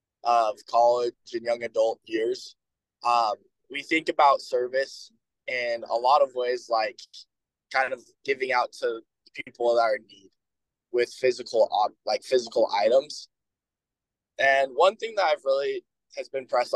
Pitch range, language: 125-200 Hz, English